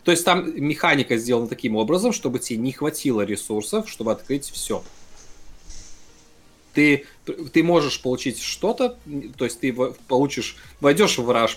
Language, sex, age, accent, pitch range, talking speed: Russian, male, 20-39, native, 110-150 Hz, 140 wpm